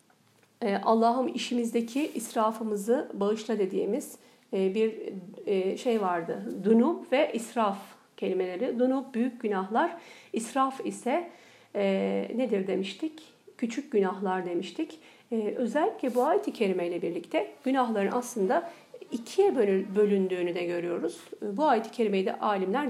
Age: 50-69